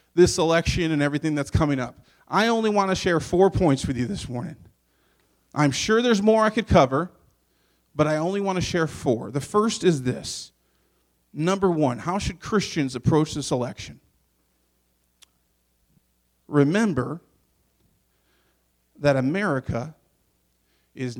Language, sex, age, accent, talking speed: English, male, 40-59, American, 135 wpm